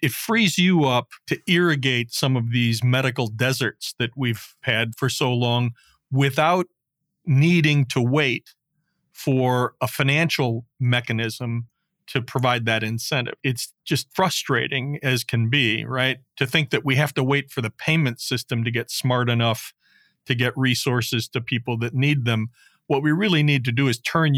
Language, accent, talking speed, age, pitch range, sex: English, American, 165 wpm, 40-59, 120-145 Hz, male